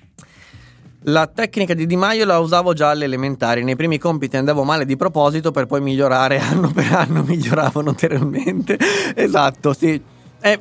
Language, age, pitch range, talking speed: Italian, 20-39, 135-180 Hz, 155 wpm